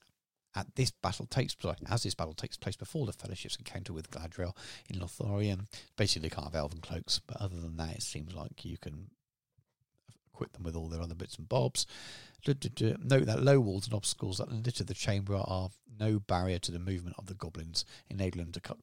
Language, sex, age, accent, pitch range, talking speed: English, male, 40-59, British, 85-115 Hz, 205 wpm